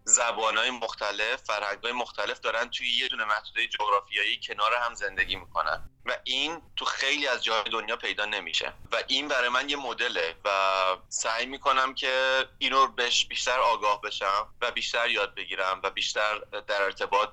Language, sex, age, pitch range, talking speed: Persian, male, 30-49, 110-140 Hz, 165 wpm